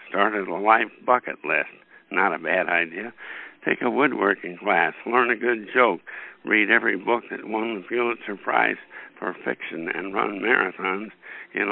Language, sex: English, male